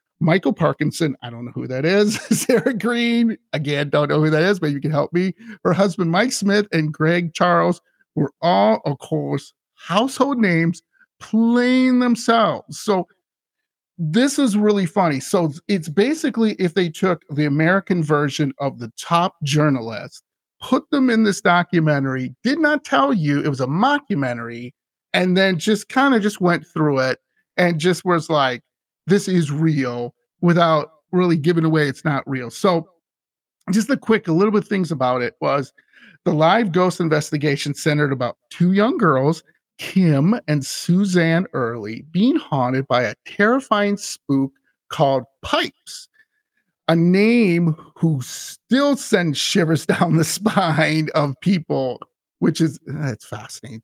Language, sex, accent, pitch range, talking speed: English, male, American, 150-210 Hz, 155 wpm